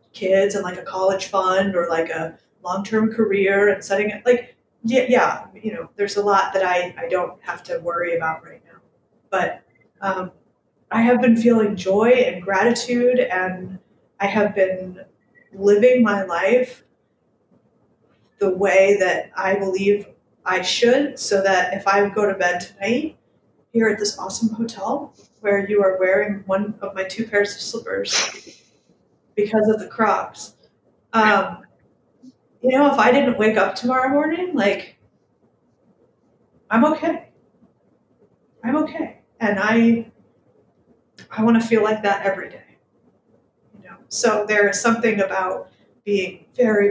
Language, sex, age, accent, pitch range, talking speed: English, female, 30-49, American, 190-230 Hz, 150 wpm